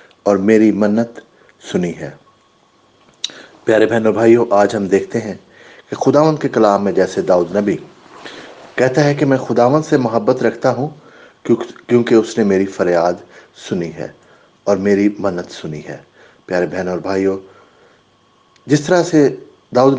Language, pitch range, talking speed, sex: English, 95-125 Hz, 145 wpm, male